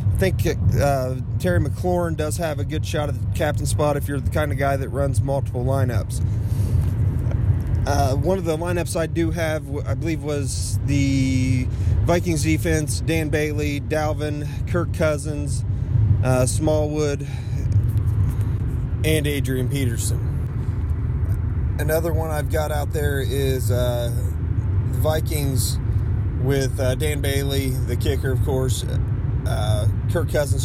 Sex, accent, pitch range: male, American, 105-130 Hz